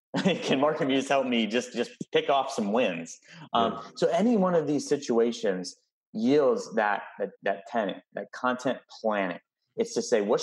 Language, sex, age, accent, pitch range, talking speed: English, male, 30-49, American, 110-150 Hz, 165 wpm